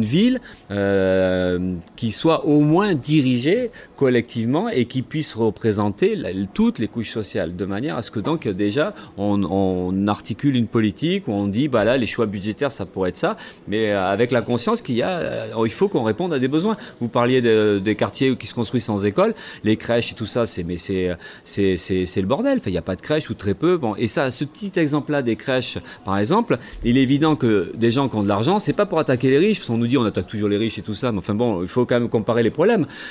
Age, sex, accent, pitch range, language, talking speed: 40-59, male, French, 110-150 Hz, French, 245 wpm